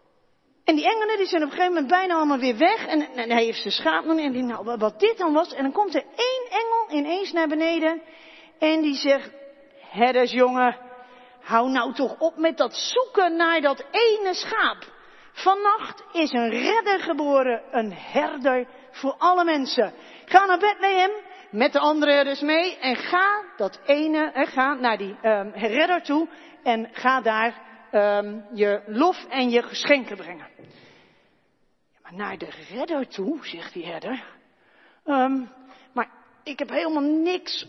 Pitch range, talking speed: 255-360 Hz, 165 wpm